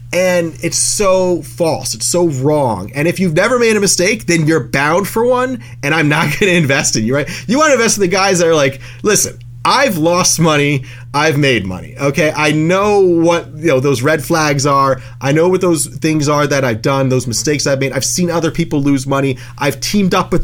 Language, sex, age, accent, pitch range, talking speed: English, male, 30-49, American, 130-170 Hz, 215 wpm